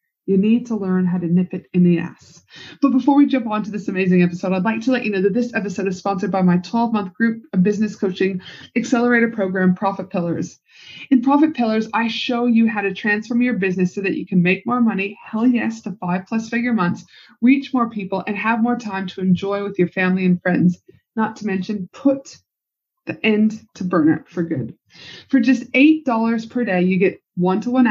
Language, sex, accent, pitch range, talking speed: English, female, American, 190-230 Hz, 210 wpm